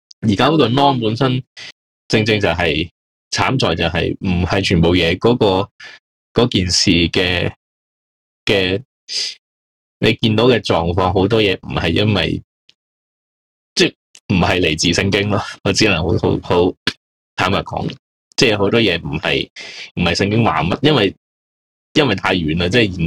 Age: 20-39